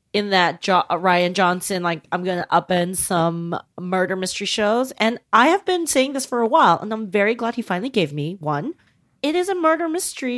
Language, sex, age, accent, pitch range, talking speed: English, female, 30-49, American, 185-245 Hz, 215 wpm